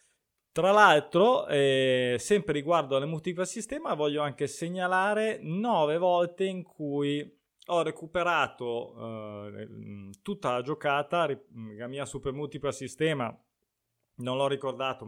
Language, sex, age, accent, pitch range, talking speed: Italian, male, 20-39, native, 125-160 Hz, 115 wpm